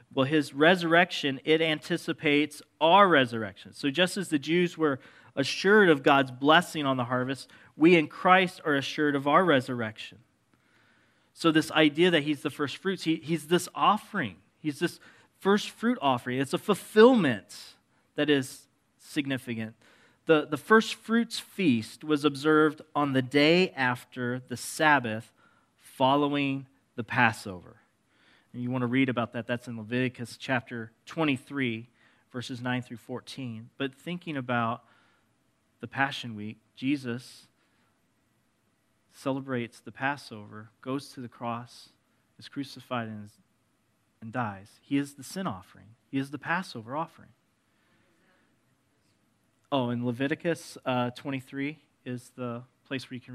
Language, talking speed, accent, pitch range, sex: English, 135 wpm, American, 120-150 Hz, male